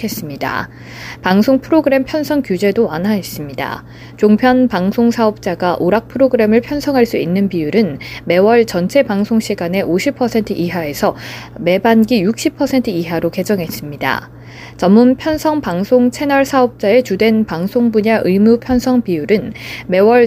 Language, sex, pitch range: Korean, female, 185-250 Hz